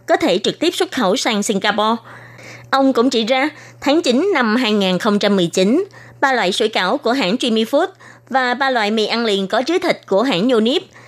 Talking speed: 190 wpm